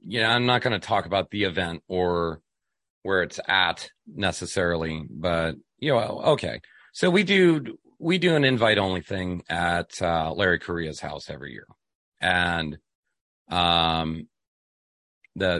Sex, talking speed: male, 150 wpm